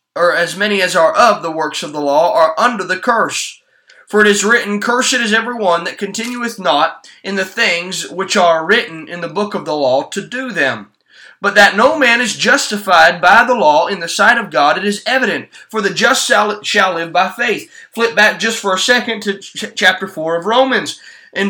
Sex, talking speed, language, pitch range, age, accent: male, 215 wpm, English, 195-250 Hz, 20-39, American